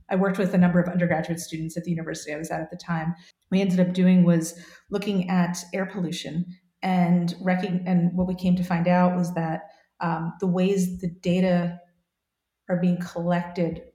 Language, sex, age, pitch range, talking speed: English, female, 40-59, 175-195 Hz, 195 wpm